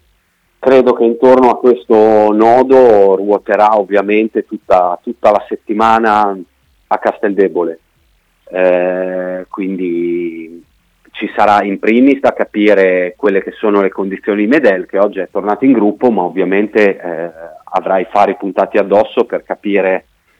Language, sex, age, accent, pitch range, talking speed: Italian, male, 30-49, native, 90-105 Hz, 130 wpm